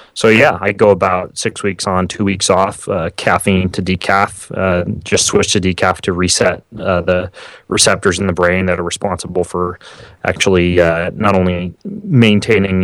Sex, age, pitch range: male, 30-49, 90-100 Hz